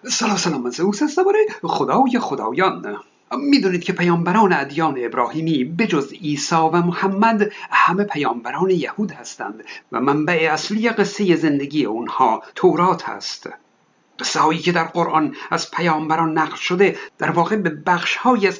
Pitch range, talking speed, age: 160-210 Hz, 140 wpm, 50-69